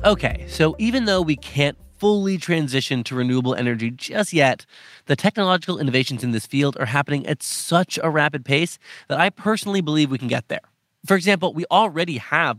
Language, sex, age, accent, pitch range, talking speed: English, male, 30-49, American, 120-175 Hz, 185 wpm